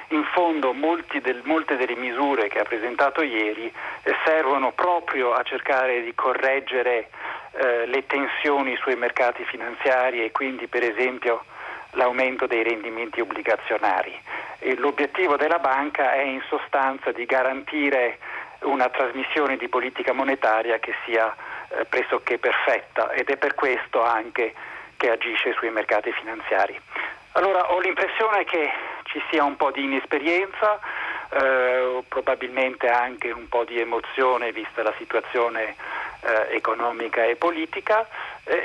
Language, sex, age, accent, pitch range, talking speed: Italian, male, 50-69, native, 120-160 Hz, 135 wpm